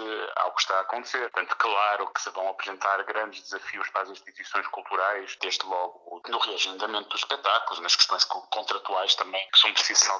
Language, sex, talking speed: Portuguese, male, 170 wpm